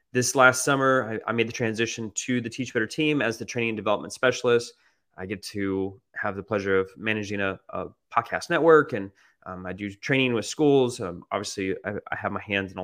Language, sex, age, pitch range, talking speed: English, male, 20-39, 95-115 Hz, 220 wpm